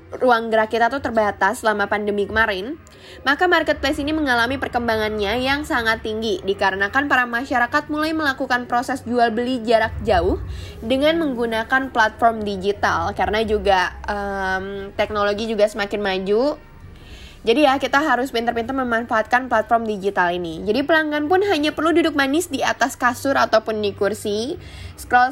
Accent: native